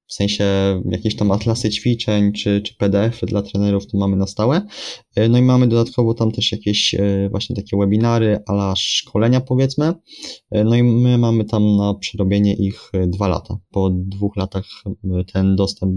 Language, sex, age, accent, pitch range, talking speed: Polish, male, 20-39, native, 100-110 Hz, 165 wpm